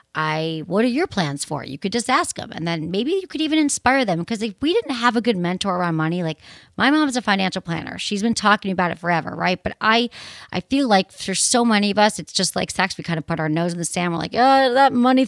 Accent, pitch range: American, 175-245 Hz